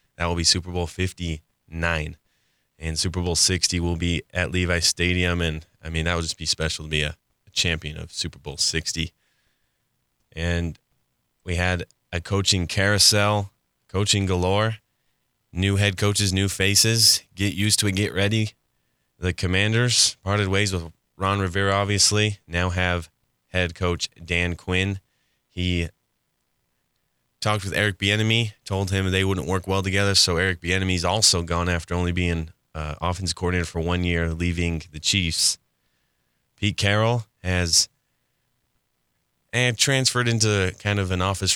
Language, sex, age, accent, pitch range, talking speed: English, male, 20-39, American, 85-100 Hz, 150 wpm